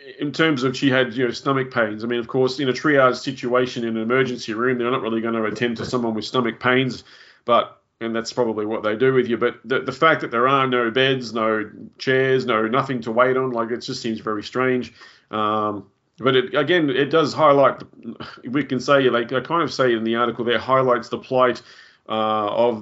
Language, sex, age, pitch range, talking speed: English, male, 30-49, 115-135 Hz, 230 wpm